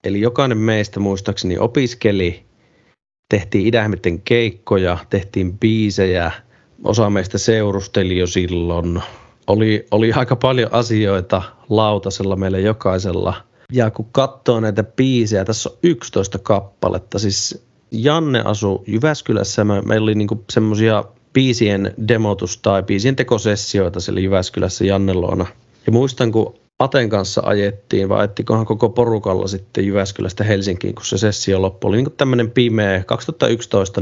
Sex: male